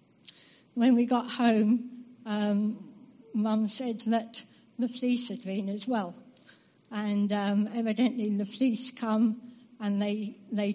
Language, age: English, 60-79